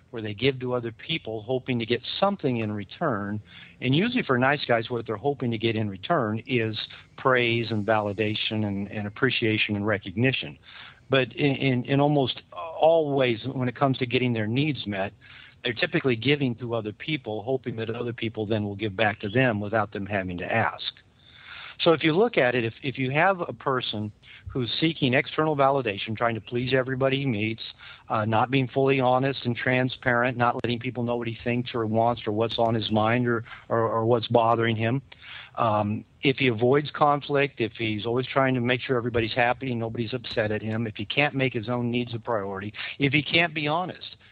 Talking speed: 205 wpm